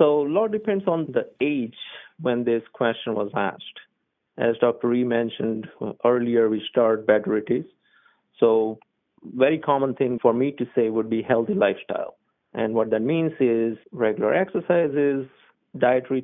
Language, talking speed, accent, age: English, 155 wpm, Indian, 50-69